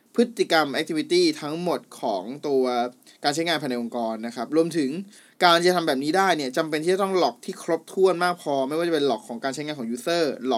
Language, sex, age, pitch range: Thai, male, 20-39, 135-175 Hz